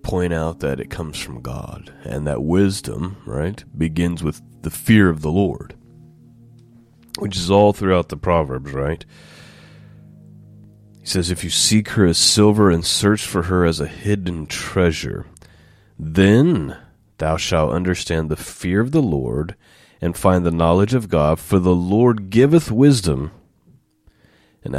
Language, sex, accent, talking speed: English, male, American, 150 wpm